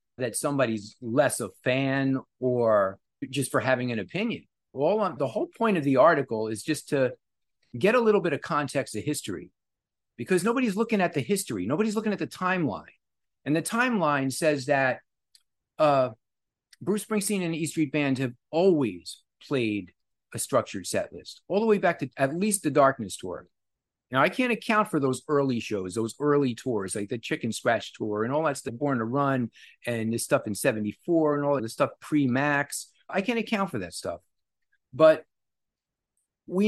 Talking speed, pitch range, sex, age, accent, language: 185 wpm, 120-175 Hz, male, 50-69, American, English